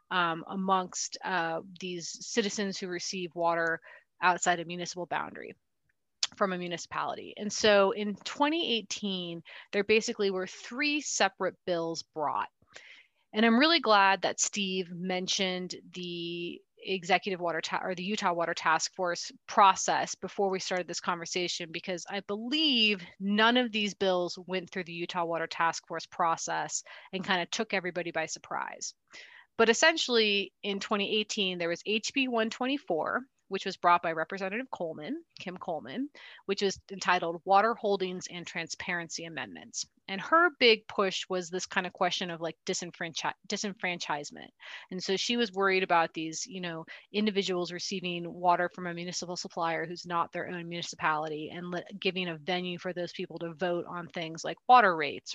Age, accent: 30-49, American